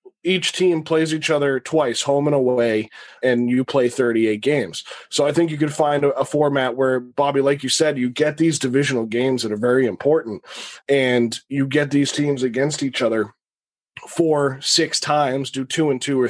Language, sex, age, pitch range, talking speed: English, male, 20-39, 135-160 Hz, 195 wpm